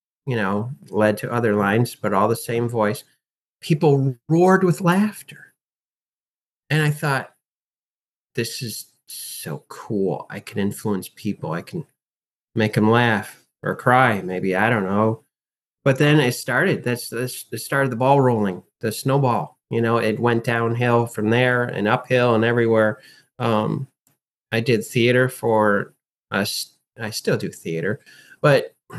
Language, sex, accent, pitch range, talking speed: English, male, American, 115-145 Hz, 150 wpm